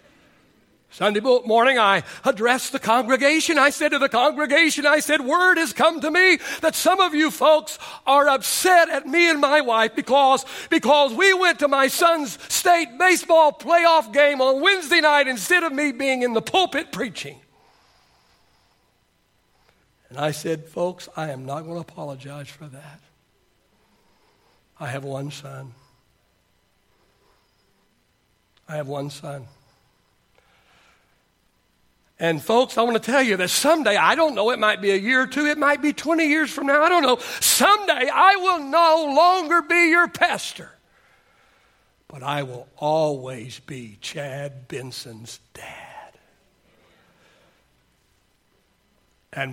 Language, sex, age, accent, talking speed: English, male, 60-79, American, 145 wpm